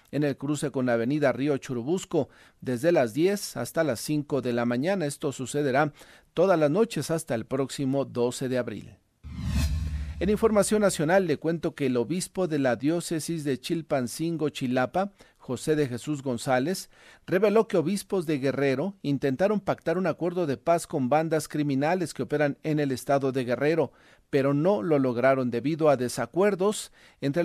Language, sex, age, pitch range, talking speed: Spanish, male, 40-59, 125-155 Hz, 165 wpm